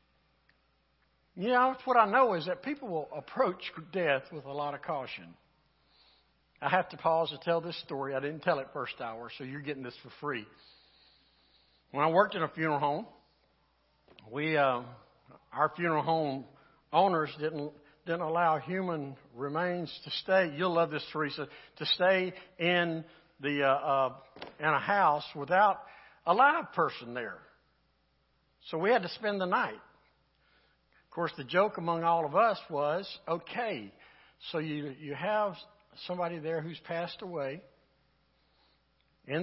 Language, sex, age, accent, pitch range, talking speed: English, male, 60-79, American, 145-185 Hz, 155 wpm